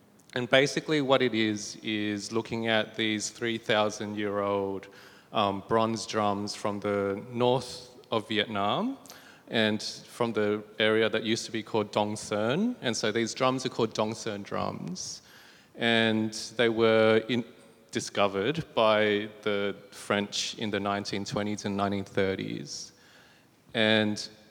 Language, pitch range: English, 100-115 Hz